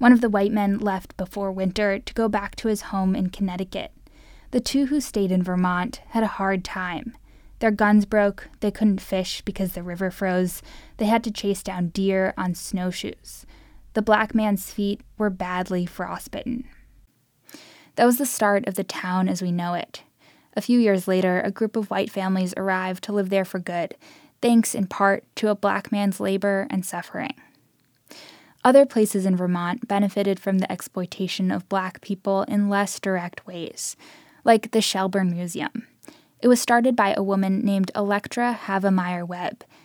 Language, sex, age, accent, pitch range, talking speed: English, female, 10-29, American, 185-220 Hz, 175 wpm